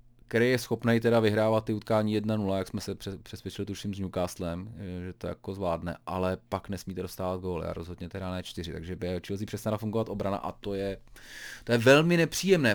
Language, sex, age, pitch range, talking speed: Czech, male, 30-49, 95-120 Hz, 205 wpm